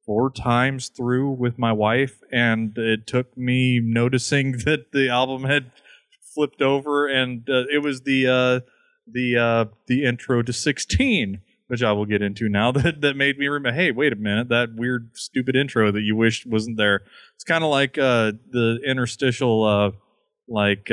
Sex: male